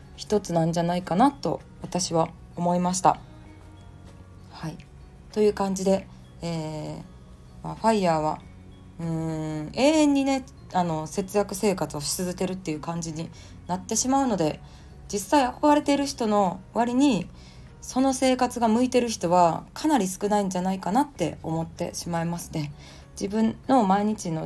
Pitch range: 155-220 Hz